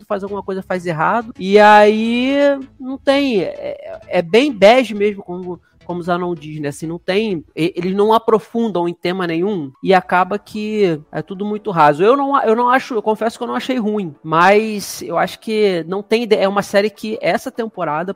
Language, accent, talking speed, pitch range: Portuguese, Brazilian, 200 wpm, 165-215 Hz